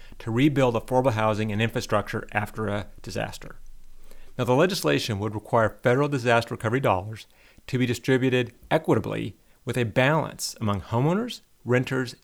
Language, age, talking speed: English, 40-59, 135 wpm